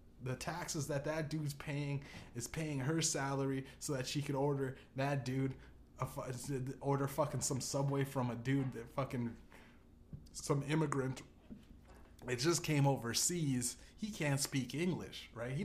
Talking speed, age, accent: 145 wpm, 20-39, American